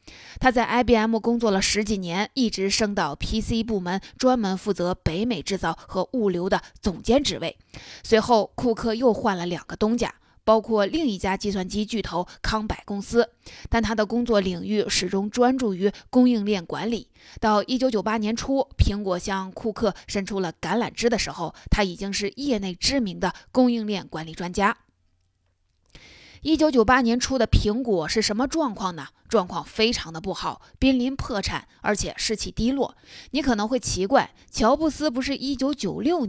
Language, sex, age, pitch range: Chinese, female, 20-39, 190-235 Hz